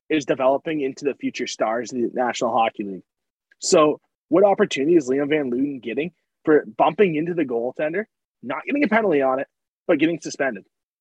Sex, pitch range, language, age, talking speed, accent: male, 145-230 Hz, English, 30-49, 180 wpm, American